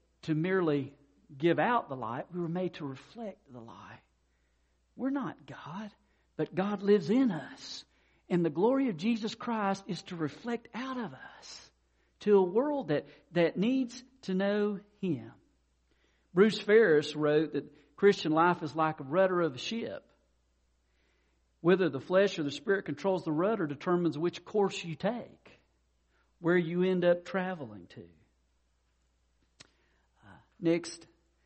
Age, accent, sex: 50-69, American, male